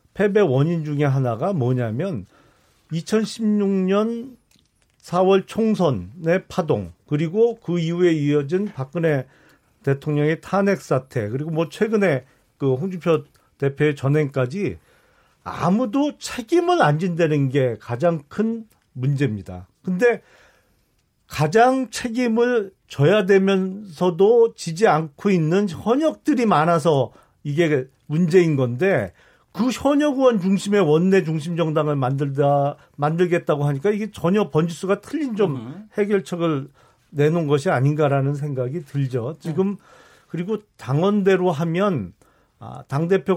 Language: Korean